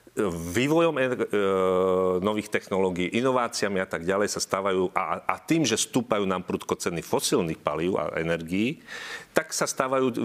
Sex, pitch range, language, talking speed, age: male, 95-125 Hz, Slovak, 140 wpm, 40-59